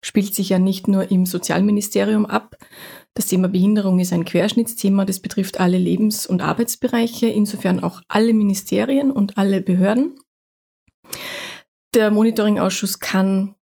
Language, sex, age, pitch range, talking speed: German, female, 30-49, 185-220 Hz, 130 wpm